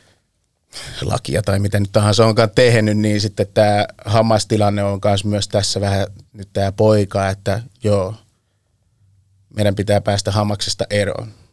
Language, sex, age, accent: Finnish, male, 30-49, native